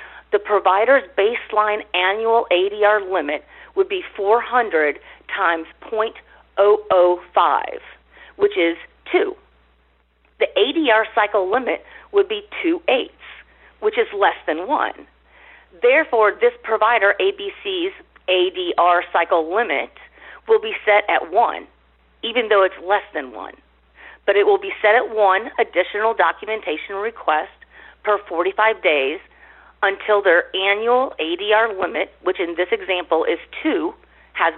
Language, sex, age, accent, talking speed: English, female, 40-59, American, 120 wpm